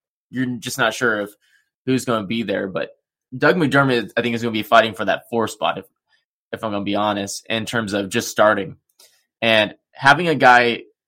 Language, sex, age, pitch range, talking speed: English, male, 20-39, 110-135 Hz, 215 wpm